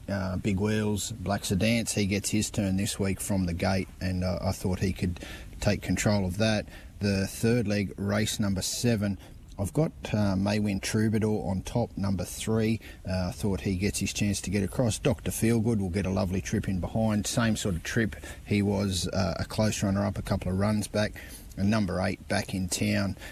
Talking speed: 200 wpm